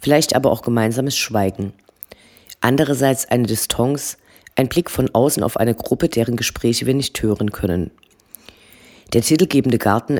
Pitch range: 115-135 Hz